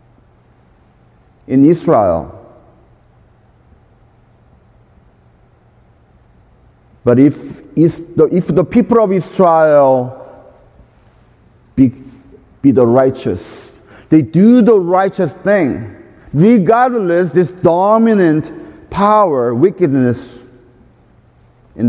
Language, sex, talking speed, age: English, male, 70 wpm, 50-69